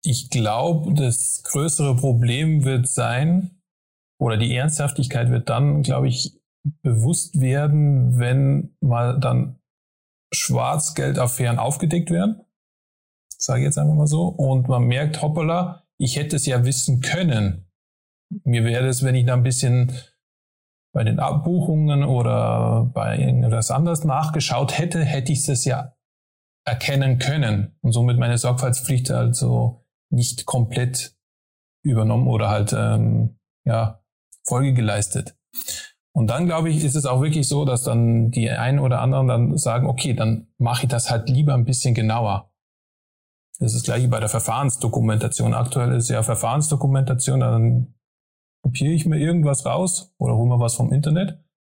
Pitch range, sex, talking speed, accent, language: 115-145 Hz, male, 145 wpm, German, German